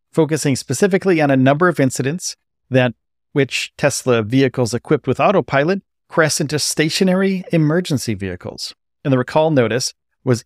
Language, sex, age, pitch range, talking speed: English, male, 40-59, 120-150 Hz, 140 wpm